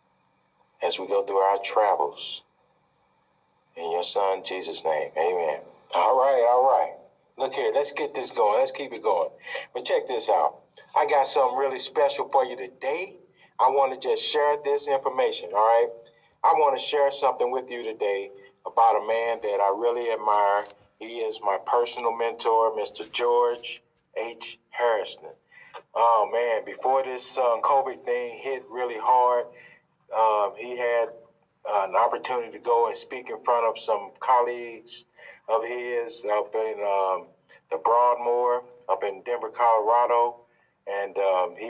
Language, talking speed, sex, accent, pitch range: English, 160 wpm, male, American, 115-150 Hz